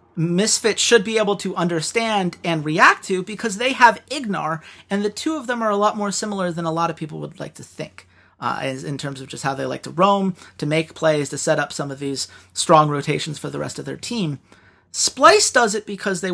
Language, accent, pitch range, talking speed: English, American, 150-205 Hz, 235 wpm